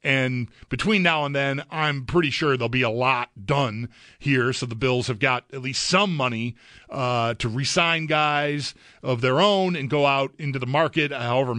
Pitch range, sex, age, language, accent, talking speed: 130-170 Hz, male, 40-59, English, American, 190 wpm